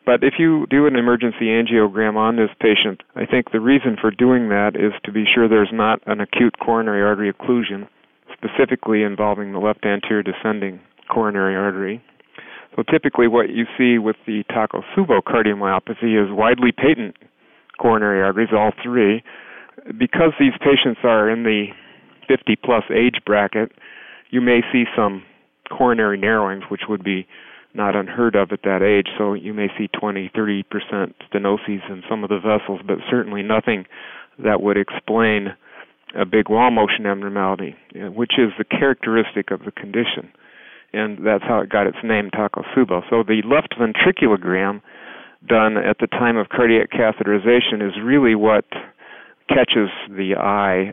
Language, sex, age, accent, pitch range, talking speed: English, male, 40-59, American, 100-115 Hz, 155 wpm